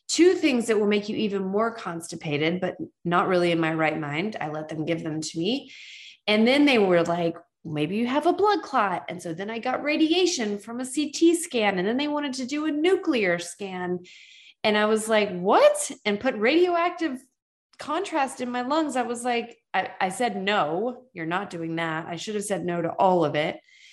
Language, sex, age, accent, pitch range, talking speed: English, female, 20-39, American, 175-265 Hz, 215 wpm